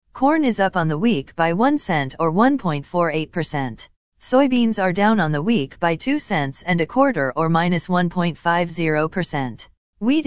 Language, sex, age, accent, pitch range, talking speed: English, female, 40-59, American, 160-220 Hz, 160 wpm